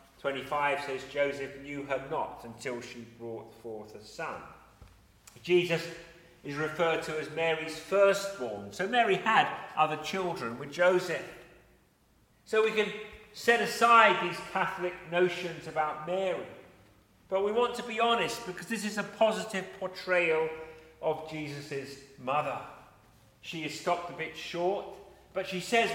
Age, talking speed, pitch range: 40-59, 140 wpm, 130-185 Hz